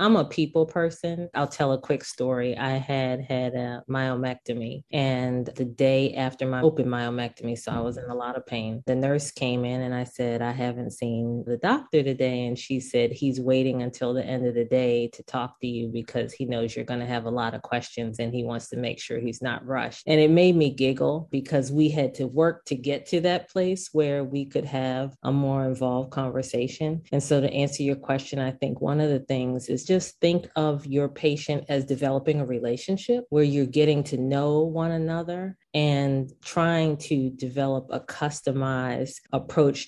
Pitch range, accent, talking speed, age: 125-145 Hz, American, 205 wpm, 20-39